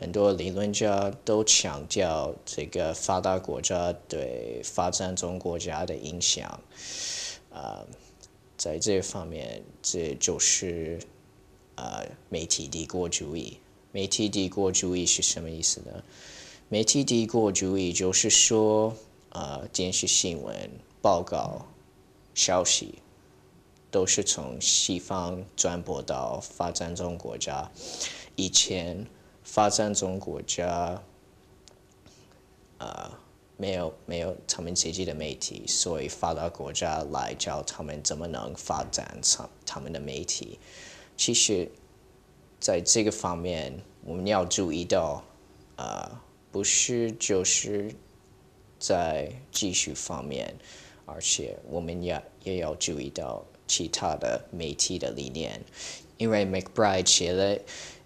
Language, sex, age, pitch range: English, male, 20-39, 85-100 Hz